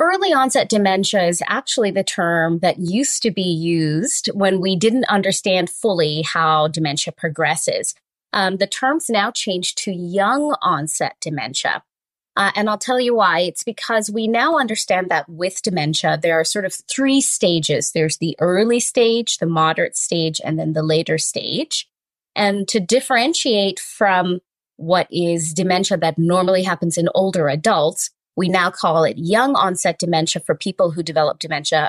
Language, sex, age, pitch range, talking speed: English, female, 20-39, 165-225 Hz, 160 wpm